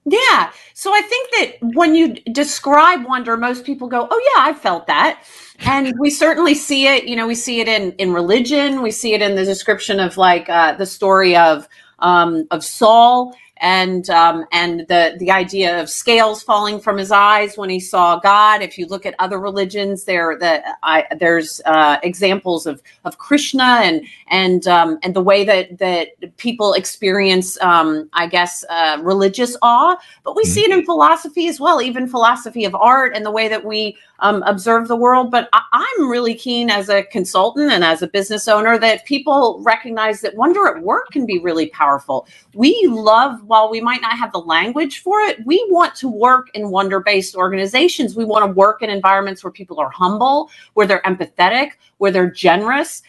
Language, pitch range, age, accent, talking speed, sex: English, 185-255 Hz, 40-59, American, 190 wpm, female